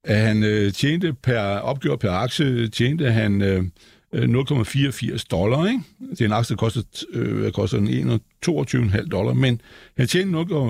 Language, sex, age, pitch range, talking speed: Danish, male, 60-79, 105-140 Hz, 135 wpm